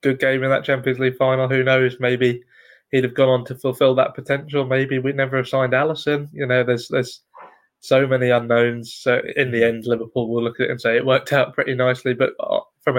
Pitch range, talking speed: 120-135 Hz, 225 wpm